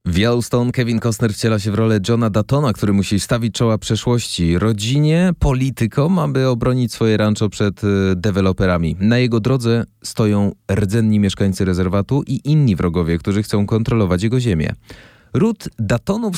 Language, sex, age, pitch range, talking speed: Polish, male, 30-49, 95-125 Hz, 145 wpm